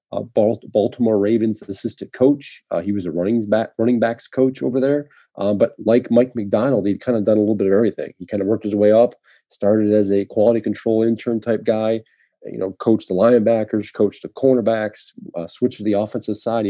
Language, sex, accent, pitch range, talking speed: English, male, American, 105-120 Hz, 210 wpm